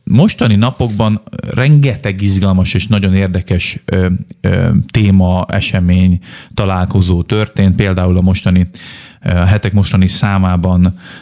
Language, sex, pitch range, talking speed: Hungarian, male, 90-105 Hz, 95 wpm